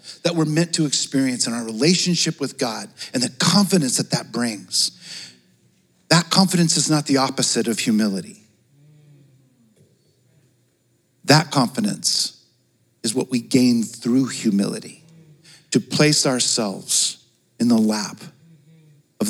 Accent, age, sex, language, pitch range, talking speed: American, 50-69, male, English, 120-160 Hz, 120 wpm